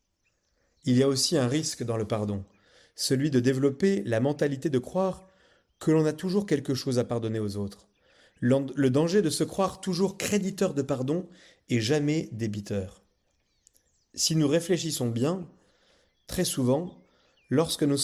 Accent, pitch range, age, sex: French, 110-150 Hz, 30-49, male